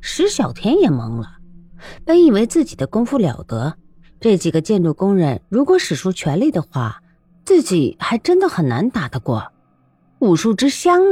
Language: Chinese